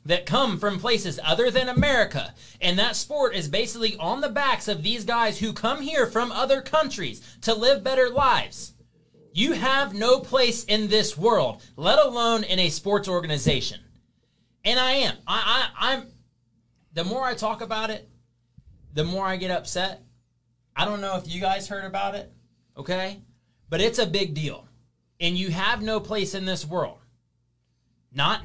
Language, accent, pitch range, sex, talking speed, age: English, American, 135-215 Hz, male, 175 wpm, 30-49